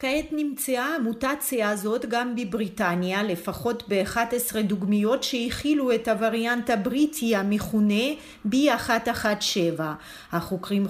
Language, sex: Hebrew, female